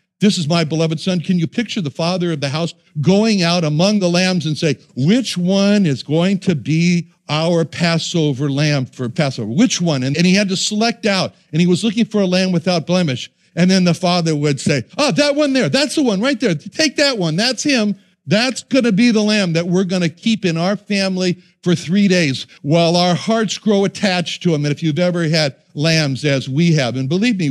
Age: 60-79